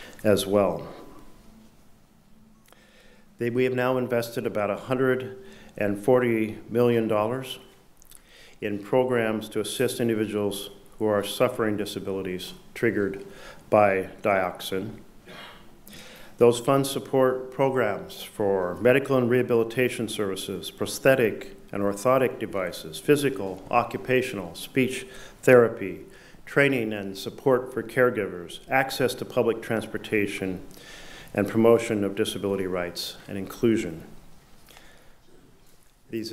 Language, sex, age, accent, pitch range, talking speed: English, male, 50-69, American, 105-130 Hz, 90 wpm